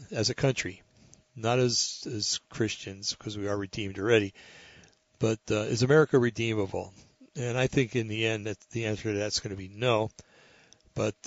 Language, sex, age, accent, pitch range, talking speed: English, male, 60-79, American, 105-125 Hz, 180 wpm